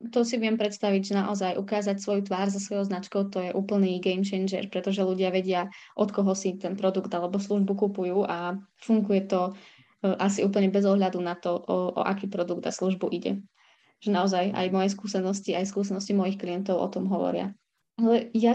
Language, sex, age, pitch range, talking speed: Slovak, female, 20-39, 190-210 Hz, 185 wpm